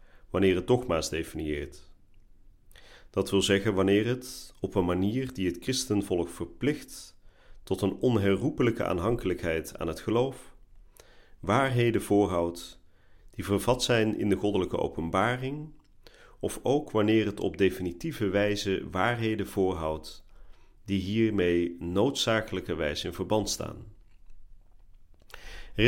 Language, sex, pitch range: Dutch, male, 90-115 Hz